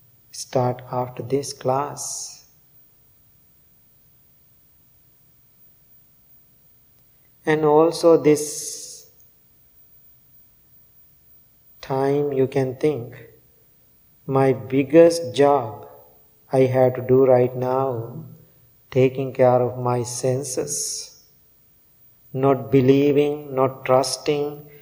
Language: English